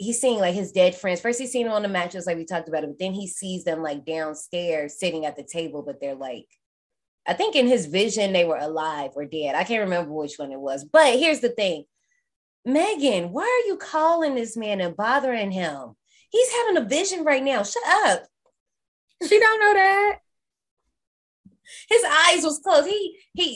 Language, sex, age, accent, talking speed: English, female, 20-39, American, 205 wpm